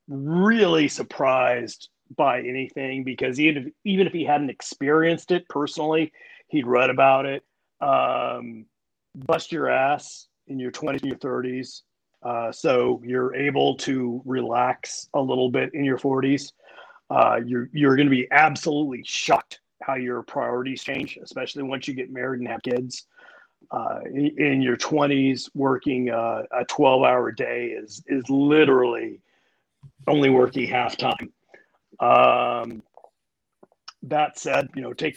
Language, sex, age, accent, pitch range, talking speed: English, male, 40-59, American, 125-150 Hz, 135 wpm